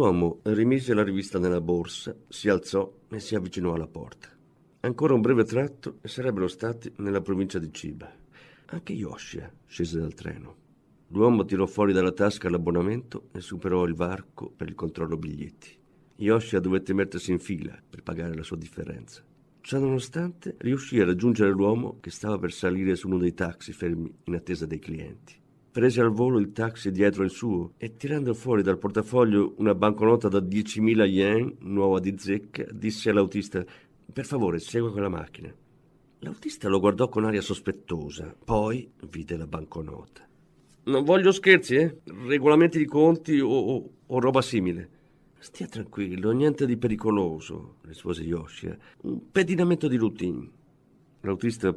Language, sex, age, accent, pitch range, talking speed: Italian, male, 50-69, native, 90-115 Hz, 155 wpm